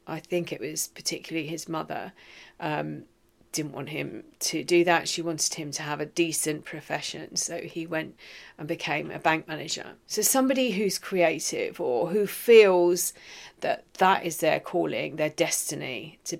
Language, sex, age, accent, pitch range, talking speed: English, female, 40-59, British, 165-205 Hz, 165 wpm